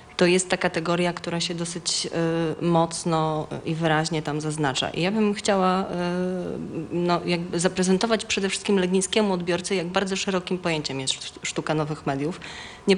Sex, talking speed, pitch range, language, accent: female, 155 wpm, 155-180 Hz, Polish, native